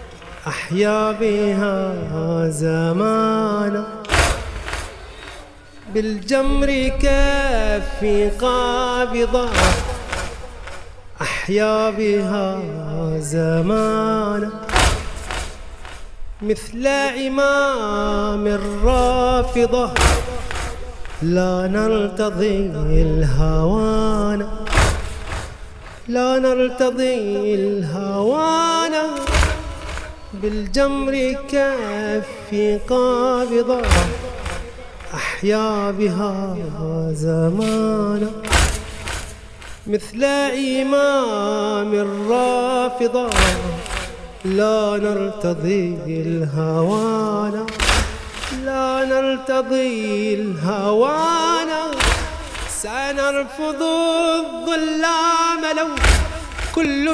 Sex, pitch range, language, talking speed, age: male, 195-265 Hz, English, 40 wpm, 30-49